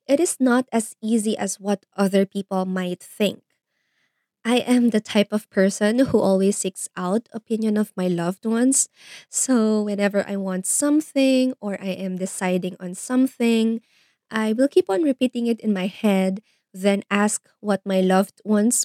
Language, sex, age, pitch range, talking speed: Filipino, female, 20-39, 195-235 Hz, 165 wpm